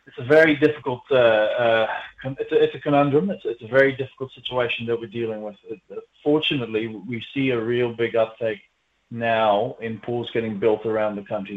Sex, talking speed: male, 195 wpm